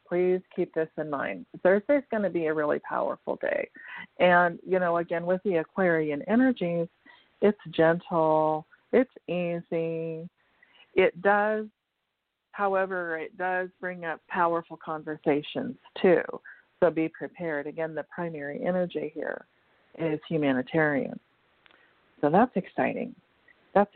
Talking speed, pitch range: 125 wpm, 165-215 Hz